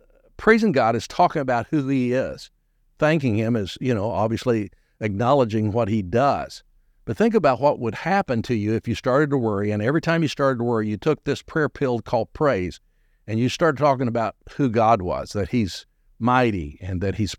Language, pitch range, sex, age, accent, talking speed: English, 105-140 Hz, male, 60-79, American, 205 wpm